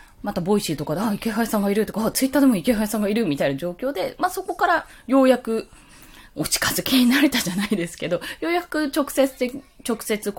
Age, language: 20-39, Japanese